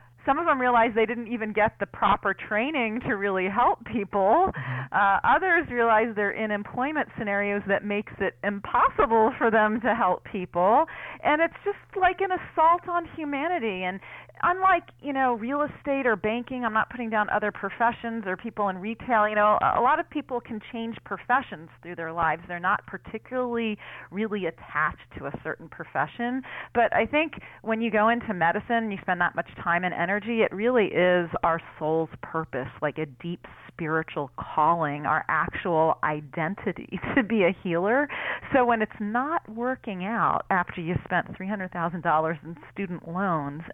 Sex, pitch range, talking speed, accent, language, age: female, 170-235 Hz, 175 wpm, American, English, 30-49